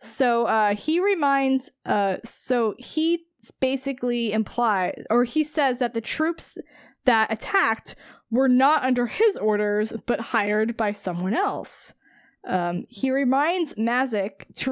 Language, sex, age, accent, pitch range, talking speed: English, female, 20-39, American, 200-260 Hz, 130 wpm